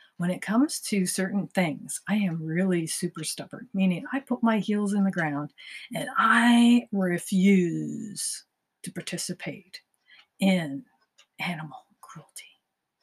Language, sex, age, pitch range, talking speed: English, female, 50-69, 175-215 Hz, 125 wpm